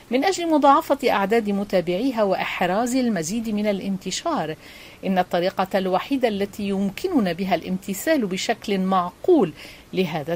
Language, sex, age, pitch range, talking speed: Arabic, female, 50-69, 185-230 Hz, 110 wpm